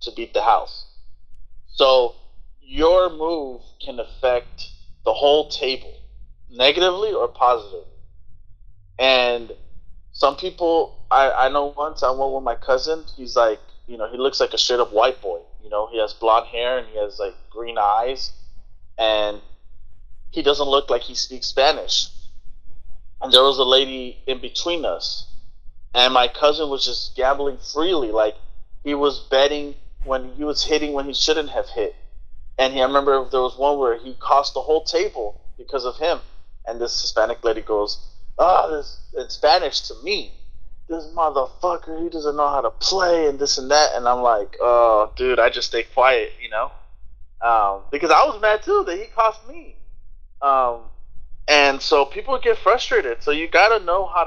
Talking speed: 170 wpm